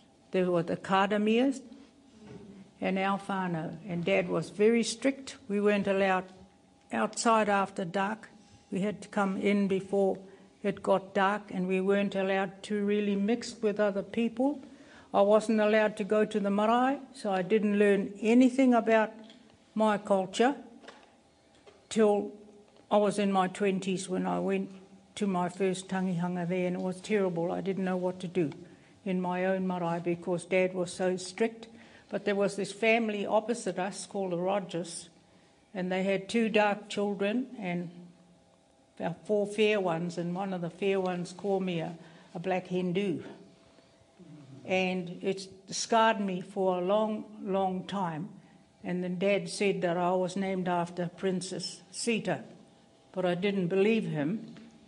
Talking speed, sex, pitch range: 155 wpm, female, 185-210 Hz